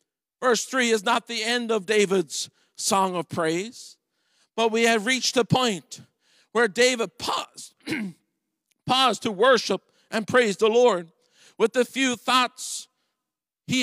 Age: 50-69